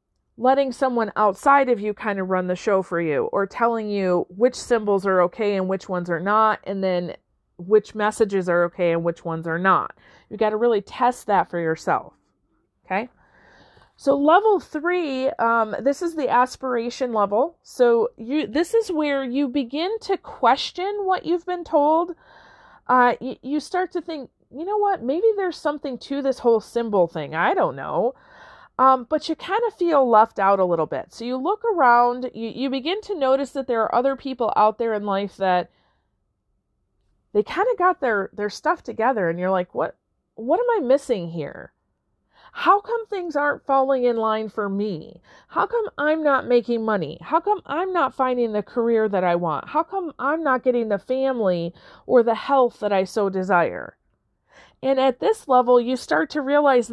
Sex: female